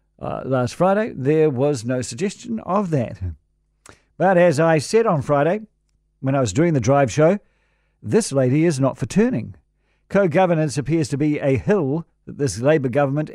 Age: 50-69